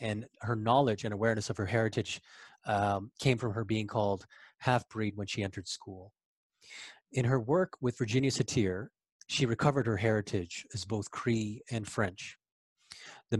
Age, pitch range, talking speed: 30-49, 105-120 Hz, 155 wpm